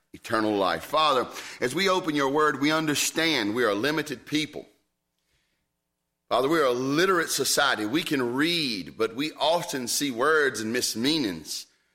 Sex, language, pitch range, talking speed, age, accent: male, English, 115-160 Hz, 150 wpm, 40-59, American